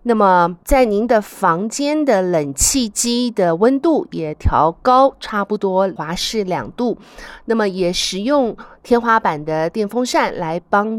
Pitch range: 175-240 Hz